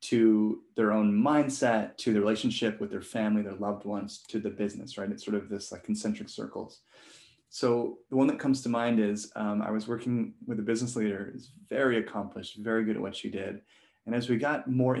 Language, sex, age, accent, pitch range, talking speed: English, male, 20-39, American, 105-125 Hz, 215 wpm